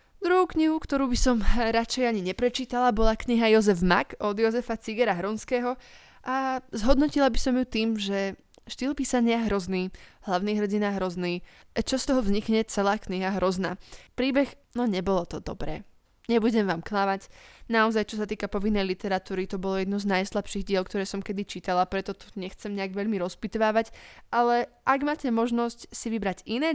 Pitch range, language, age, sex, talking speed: 195-245 Hz, Slovak, 20-39, female, 165 wpm